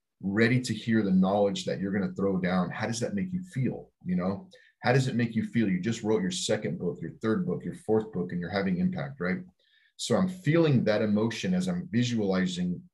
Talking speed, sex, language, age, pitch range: 230 wpm, male, English, 40-59, 100-150 Hz